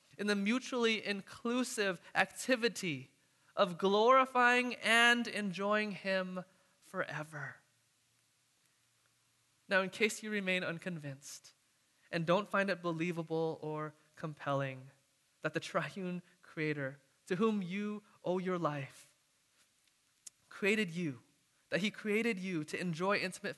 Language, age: English, 20-39